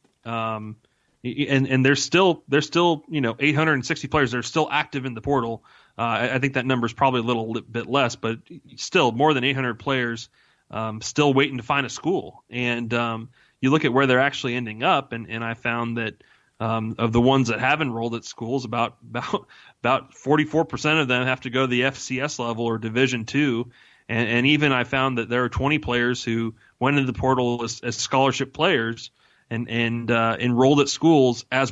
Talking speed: 220 wpm